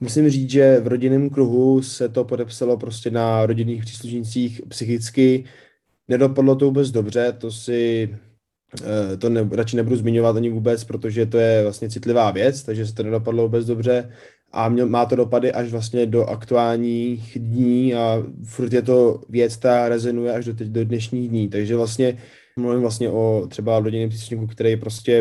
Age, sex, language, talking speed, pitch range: 20-39, male, Czech, 165 wpm, 115-125 Hz